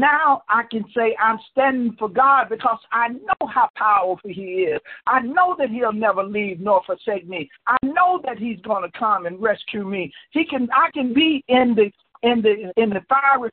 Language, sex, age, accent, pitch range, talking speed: English, male, 60-79, American, 225-285 Hz, 205 wpm